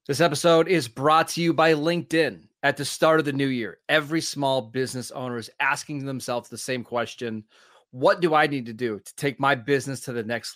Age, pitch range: 30-49, 125-150 Hz